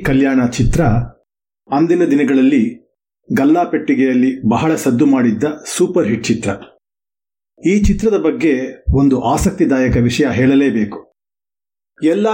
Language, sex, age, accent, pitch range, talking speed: Kannada, male, 50-69, native, 135-205 Hz, 90 wpm